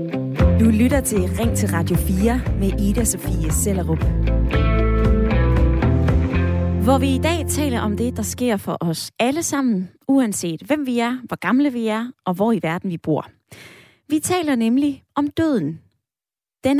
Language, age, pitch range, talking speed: Danish, 20-39, 170-255 Hz, 155 wpm